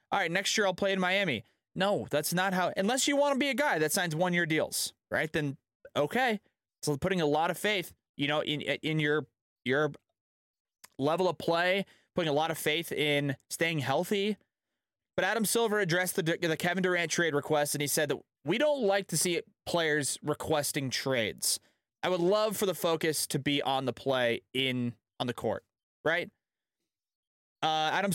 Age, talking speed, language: 20-39, 190 wpm, English